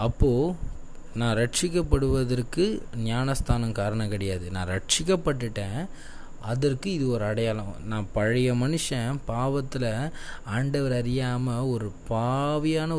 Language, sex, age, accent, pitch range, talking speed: Tamil, male, 20-39, native, 115-155 Hz, 90 wpm